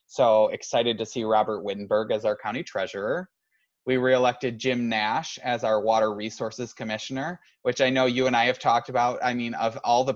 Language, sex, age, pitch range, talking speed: English, male, 20-39, 110-125 Hz, 195 wpm